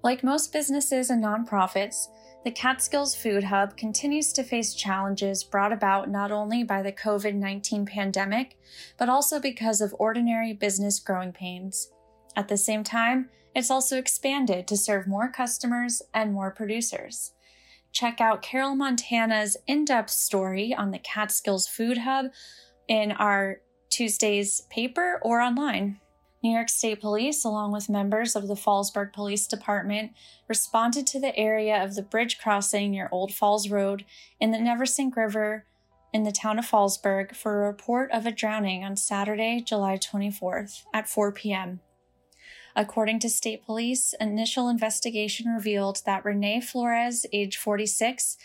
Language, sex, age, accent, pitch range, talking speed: English, female, 10-29, American, 200-235 Hz, 145 wpm